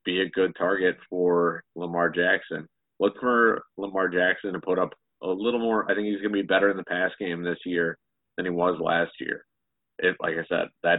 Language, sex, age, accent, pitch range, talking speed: English, male, 30-49, American, 85-100 Hz, 215 wpm